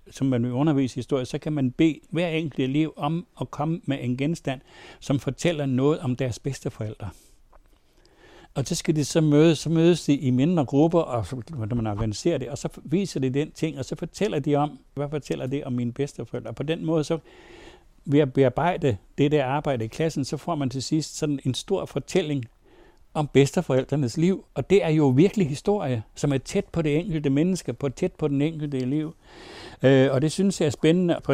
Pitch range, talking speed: 130-160 Hz, 215 wpm